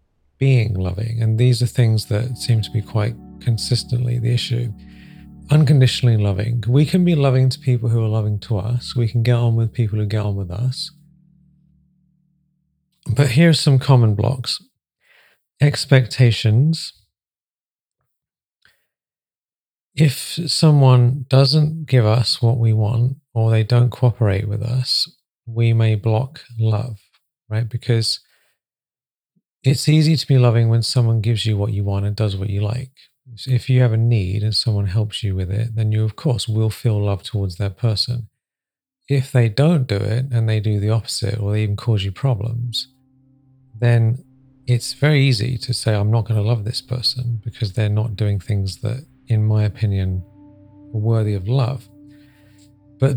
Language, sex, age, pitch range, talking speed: English, male, 40-59, 105-130 Hz, 165 wpm